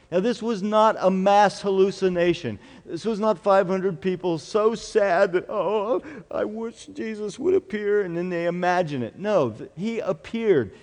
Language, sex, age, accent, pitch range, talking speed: English, male, 50-69, American, 155-220 Hz, 160 wpm